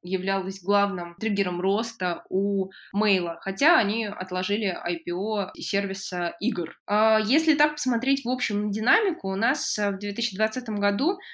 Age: 20-39